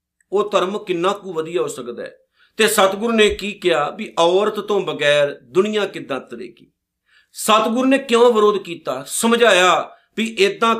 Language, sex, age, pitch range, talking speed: Punjabi, male, 50-69, 170-220 Hz, 150 wpm